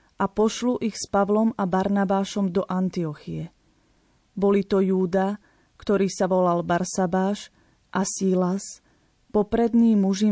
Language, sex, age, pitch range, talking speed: Slovak, female, 30-49, 190-210 Hz, 115 wpm